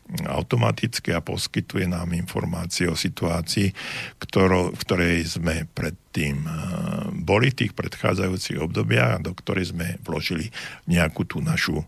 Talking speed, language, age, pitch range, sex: 120 wpm, Slovak, 50-69, 85-95 Hz, male